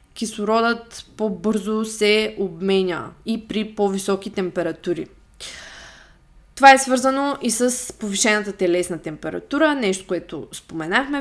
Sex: female